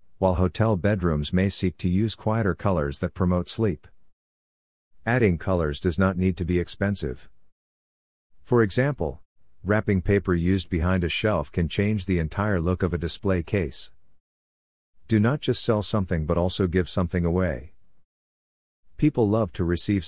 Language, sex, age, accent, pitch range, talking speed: English, male, 50-69, American, 85-100 Hz, 150 wpm